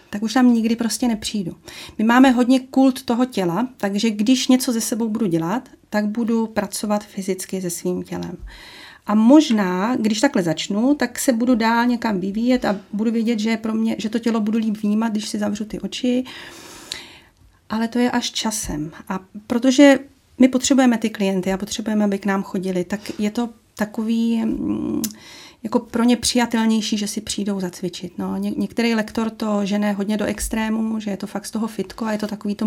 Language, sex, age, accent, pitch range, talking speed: Czech, female, 30-49, native, 200-235 Hz, 190 wpm